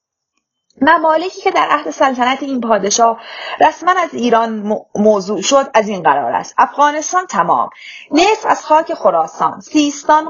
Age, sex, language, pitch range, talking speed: 30-49, female, Persian, 195-285 Hz, 140 wpm